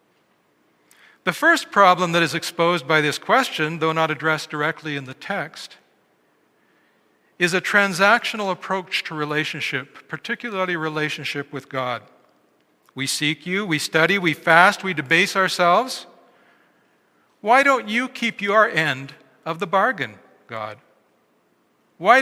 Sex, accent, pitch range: male, American, 155-200 Hz